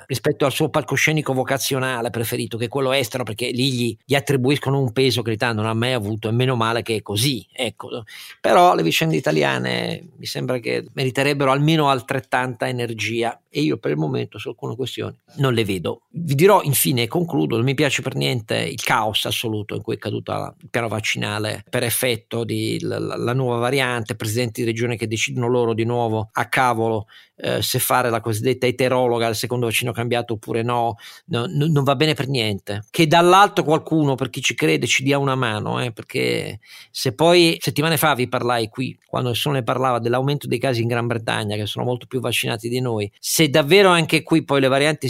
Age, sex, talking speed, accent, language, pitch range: 50-69, male, 200 wpm, native, Italian, 115-140 Hz